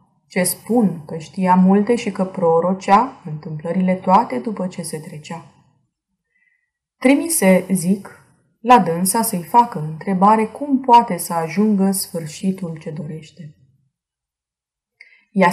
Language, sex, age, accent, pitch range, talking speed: Romanian, female, 20-39, native, 165-215 Hz, 110 wpm